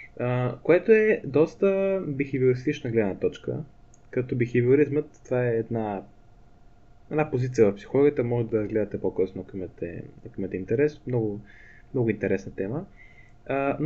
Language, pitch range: Bulgarian, 115-150 Hz